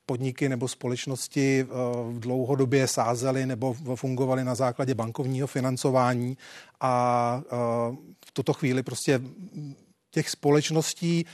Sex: male